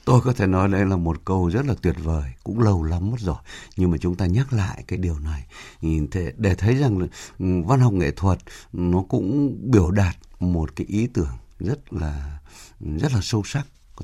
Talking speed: 220 wpm